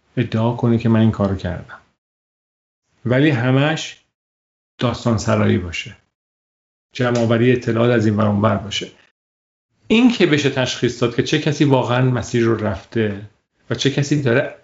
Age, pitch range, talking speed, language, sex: 40-59, 110-135 Hz, 140 wpm, Persian, male